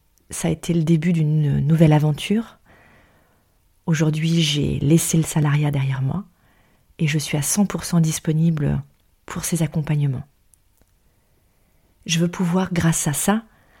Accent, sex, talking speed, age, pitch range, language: French, female, 130 wpm, 40-59, 140-175 Hz, French